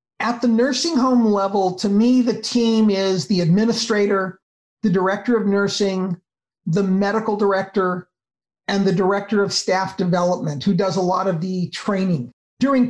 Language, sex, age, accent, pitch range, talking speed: English, male, 50-69, American, 195-225 Hz, 155 wpm